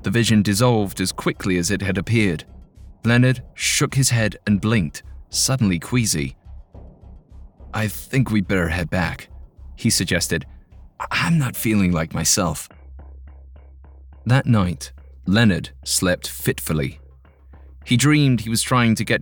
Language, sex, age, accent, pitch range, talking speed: English, male, 30-49, British, 85-120 Hz, 130 wpm